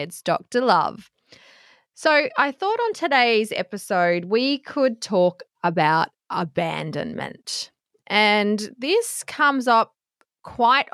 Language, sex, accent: English, female, Australian